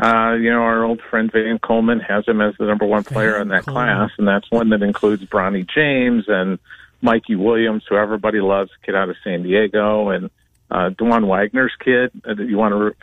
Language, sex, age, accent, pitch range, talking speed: English, male, 50-69, American, 95-115 Hz, 210 wpm